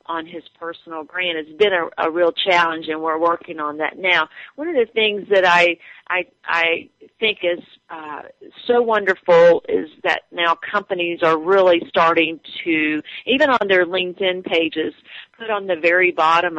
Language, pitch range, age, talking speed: English, 160-205 Hz, 40-59, 170 wpm